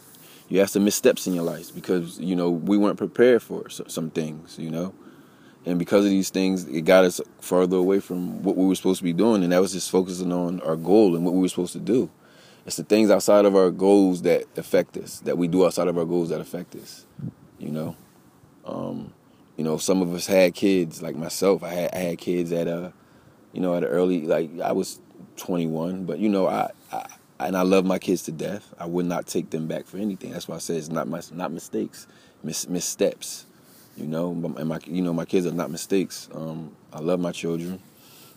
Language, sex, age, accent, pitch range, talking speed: English, male, 20-39, American, 85-95 Hz, 230 wpm